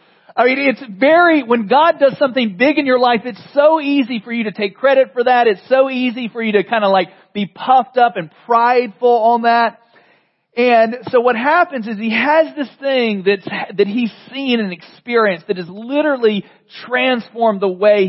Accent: American